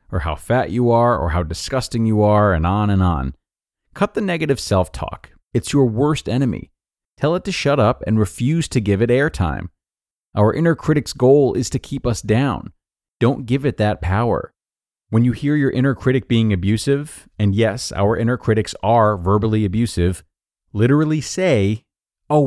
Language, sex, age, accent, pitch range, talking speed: English, male, 30-49, American, 95-140 Hz, 175 wpm